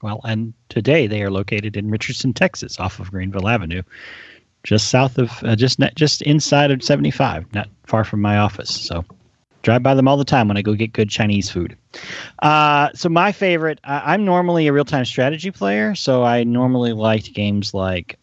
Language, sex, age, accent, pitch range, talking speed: English, male, 30-49, American, 105-130 Hz, 195 wpm